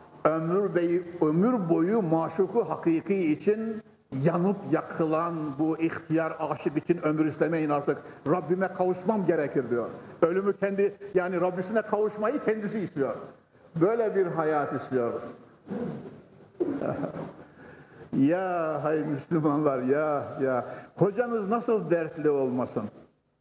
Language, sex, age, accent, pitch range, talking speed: Turkish, male, 60-79, native, 165-230 Hz, 105 wpm